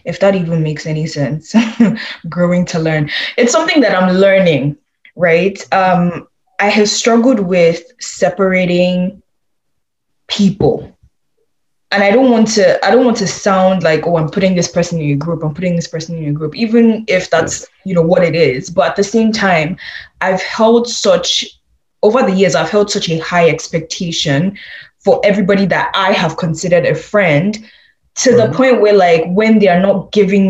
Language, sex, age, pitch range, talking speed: English, female, 10-29, 170-210 Hz, 175 wpm